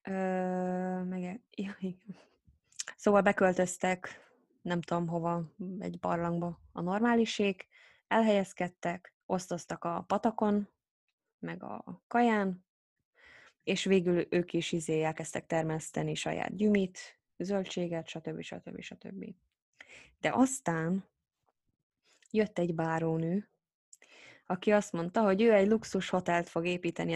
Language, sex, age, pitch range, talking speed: Hungarian, female, 20-39, 170-210 Hz, 110 wpm